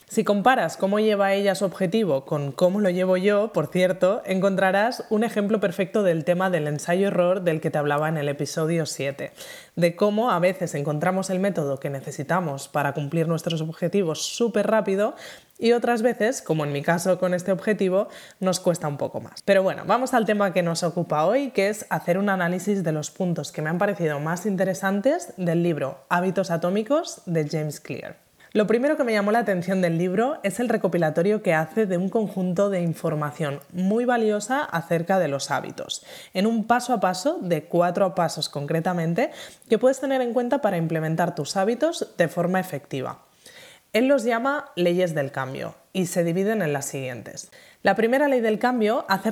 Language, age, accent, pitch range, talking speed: Spanish, 20-39, Spanish, 170-220 Hz, 185 wpm